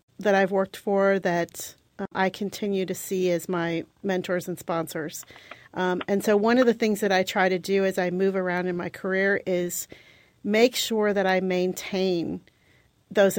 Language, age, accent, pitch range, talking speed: English, 40-59, American, 180-210 Hz, 185 wpm